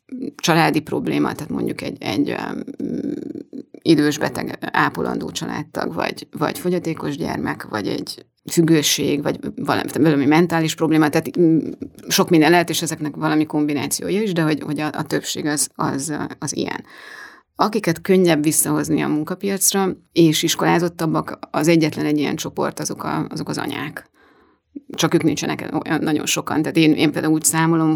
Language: English